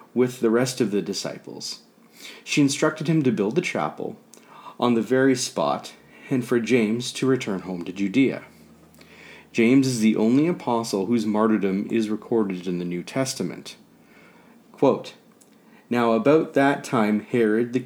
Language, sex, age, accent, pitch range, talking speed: English, male, 40-59, American, 105-130 Hz, 150 wpm